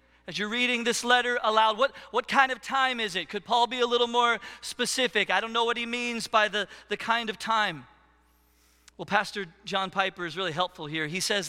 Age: 40-59